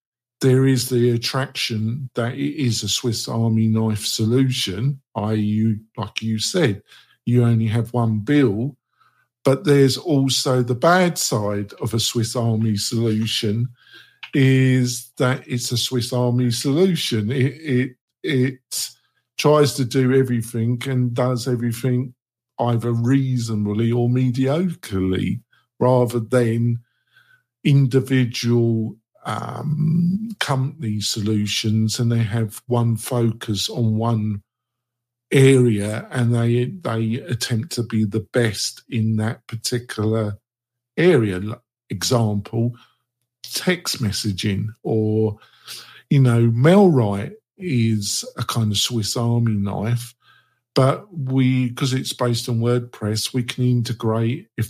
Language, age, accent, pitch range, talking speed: English, 50-69, British, 110-130 Hz, 115 wpm